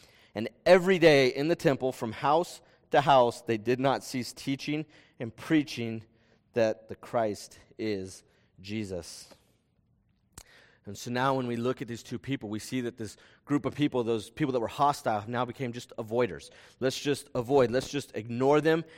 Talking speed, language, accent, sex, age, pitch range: 175 wpm, English, American, male, 30-49, 115-145 Hz